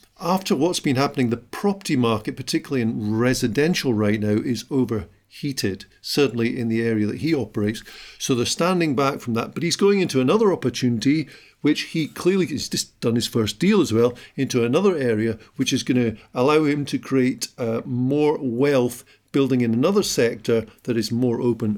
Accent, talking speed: British, 180 wpm